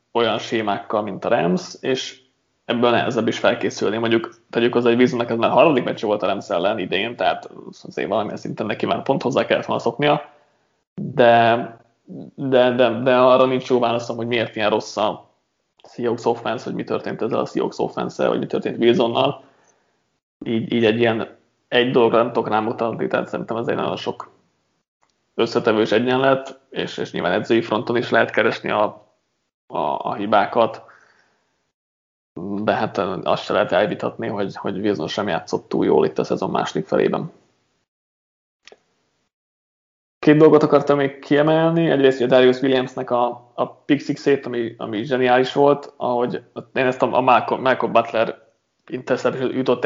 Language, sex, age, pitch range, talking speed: Hungarian, male, 20-39, 115-130 Hz, 160 wpm